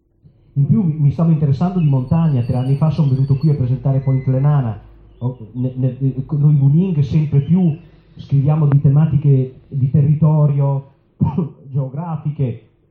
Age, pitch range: 40-59, 130-160 Hz